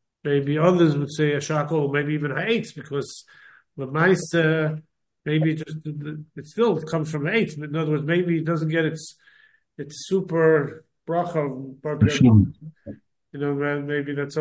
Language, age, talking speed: English, 50-69, 150 wpm